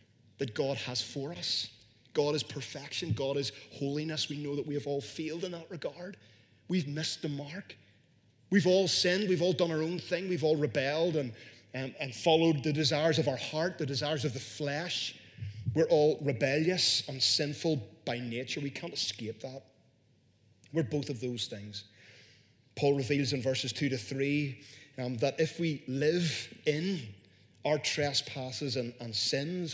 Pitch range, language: 120-150 Hz, English